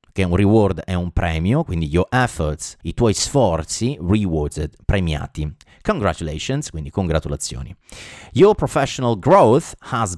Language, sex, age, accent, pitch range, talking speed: Italian, male, 30-49, native, 85-125 Hz, 125 wpm